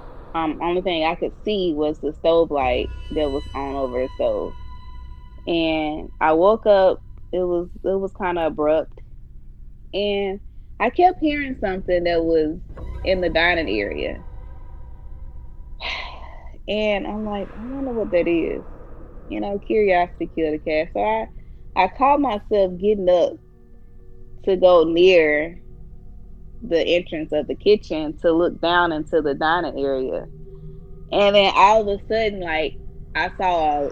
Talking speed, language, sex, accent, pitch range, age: 145 wpm, English, female, American, 150-185 Hz, 20-39